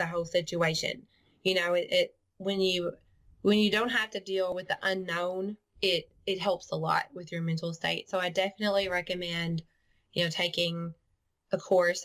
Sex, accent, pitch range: female, American, 175-200 Hz